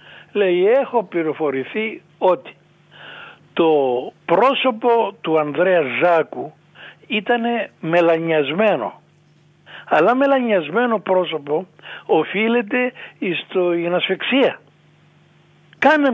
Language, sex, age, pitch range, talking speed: Greek, male, 60-79, 160-220 Hz, 65 wpm